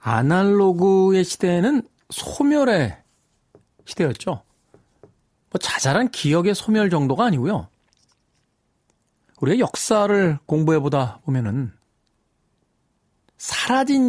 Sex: male